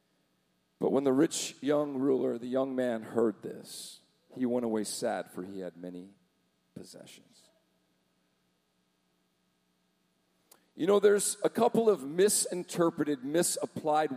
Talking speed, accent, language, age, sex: 120 wpm, American, English, 50-69, male